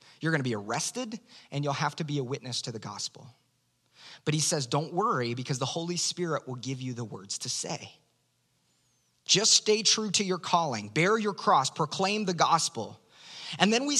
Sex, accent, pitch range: male, American, 135-175 Hz